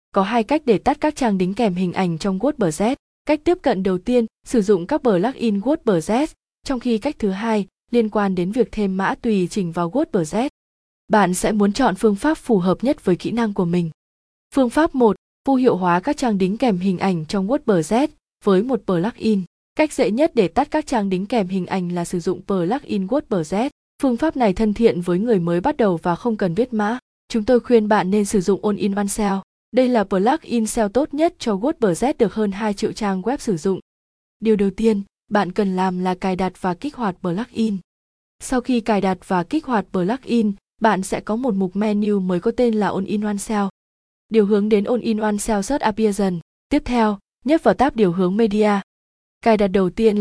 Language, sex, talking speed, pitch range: Vietnamese, female, 220 wpm, 195-240 Hz